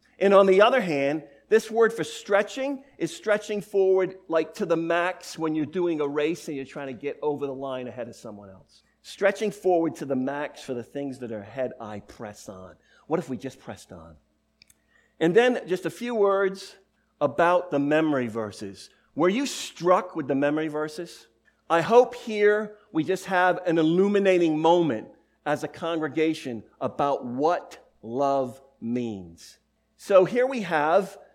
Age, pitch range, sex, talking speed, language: 50-69, 140-195 Hz, male, 170 wpm, English